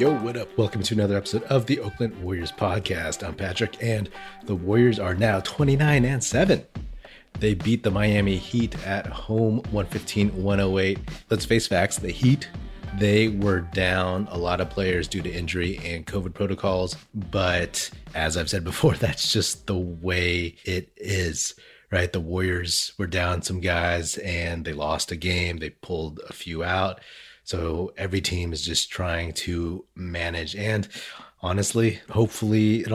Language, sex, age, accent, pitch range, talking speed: English, male, 30-49, American, 90-105 Hz, 160 wpm